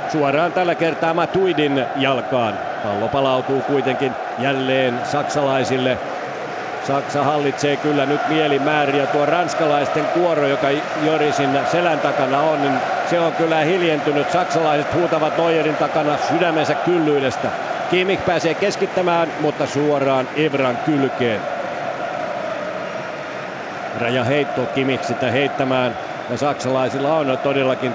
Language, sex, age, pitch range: Finnish, male, 50-69, 130-155 Hz